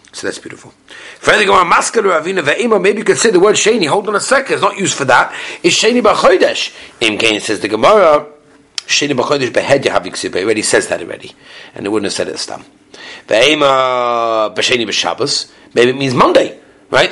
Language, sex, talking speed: English, male, 170 wpm